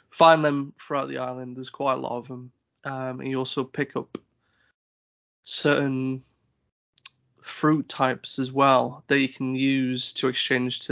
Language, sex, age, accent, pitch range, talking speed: English, male, 20-39, British, 130-140 Hz, 160 wpm